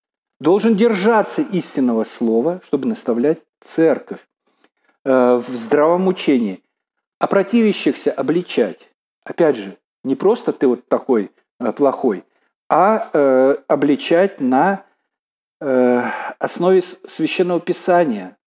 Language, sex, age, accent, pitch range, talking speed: Russian, male, 50-69, native, 125-175 Hz, 85 wpm